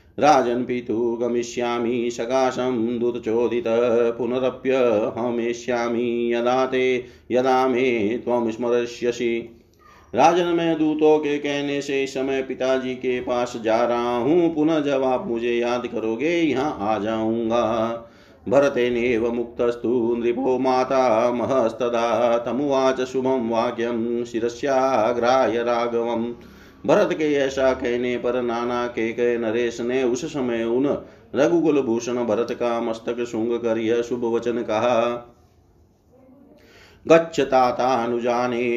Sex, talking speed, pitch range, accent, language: male, 100 wpm, 120-130 Hz, native, Hindi